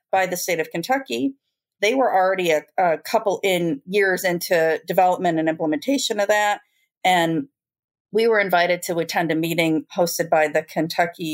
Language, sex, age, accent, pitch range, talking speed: English, female, 40-59, American, 170-220 Hz, 165 wpm